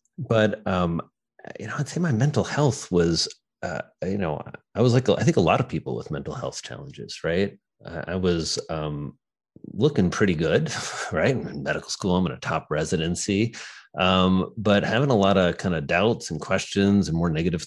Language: English